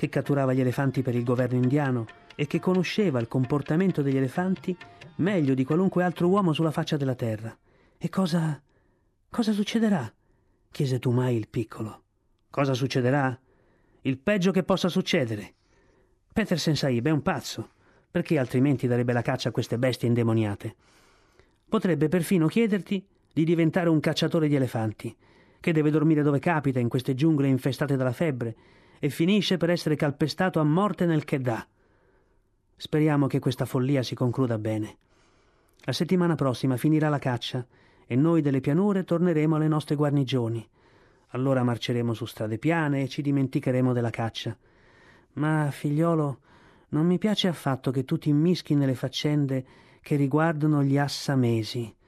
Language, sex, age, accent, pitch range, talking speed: Italian, male, 40-59, native, 125-160 Hz, 150 wpm